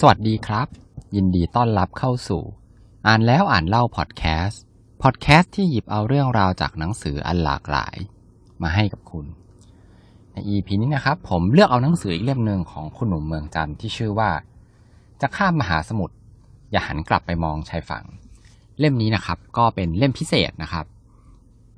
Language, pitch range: Thai, 85-115 Hz